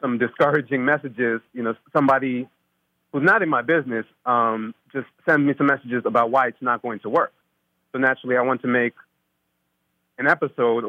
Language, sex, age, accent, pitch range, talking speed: English, male, 30-49, American, 110-125 Hz, 175 wpm